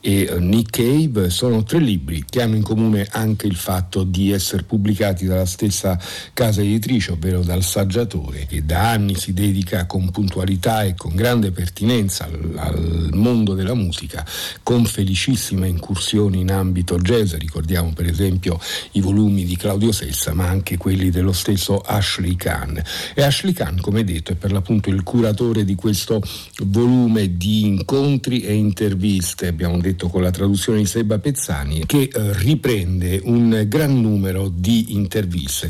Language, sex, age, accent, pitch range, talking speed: Italian, male, 50-69, native, 90-110 Hz, 155 wpm